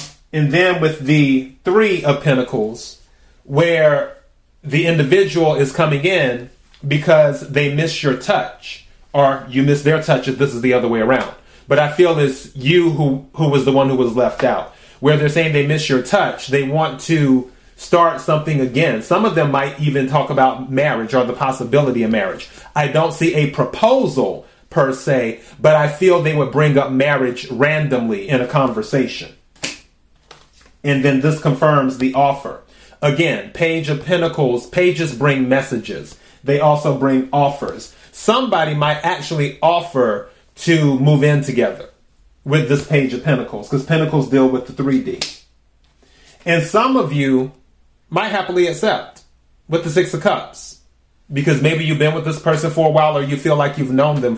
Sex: male